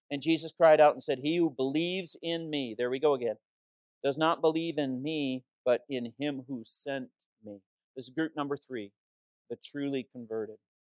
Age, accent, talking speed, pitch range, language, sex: 50-69, American, 185 wpm, 135-195 Hz, English, male